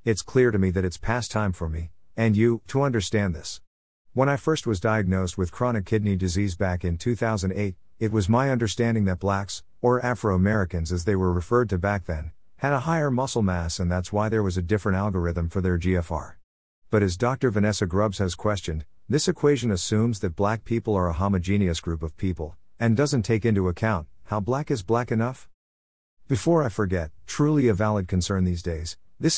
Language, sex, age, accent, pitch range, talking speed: English, male, 50-69, American, 90-115 Hz, 200 wpm